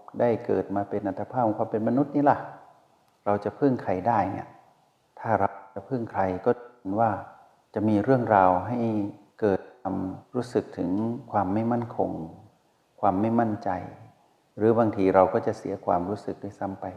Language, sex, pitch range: Thai, male, 95-115 Hz